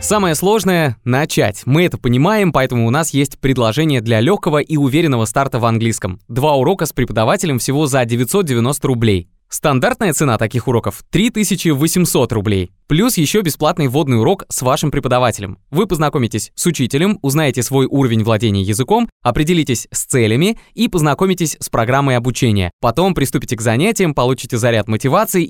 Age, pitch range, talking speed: 20-39, 115-165 Hz, 150 wpm